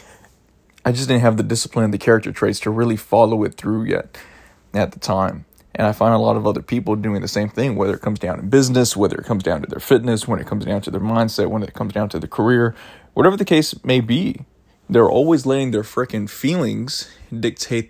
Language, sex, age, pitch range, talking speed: English, male, 20-39, 105-120 Hz, 235 wpm